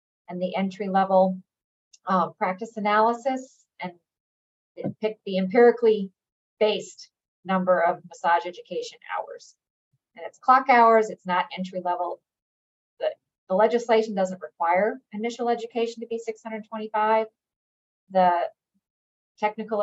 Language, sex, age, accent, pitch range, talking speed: English, female, 40-59, American, 180-215 Hz, 115 wpm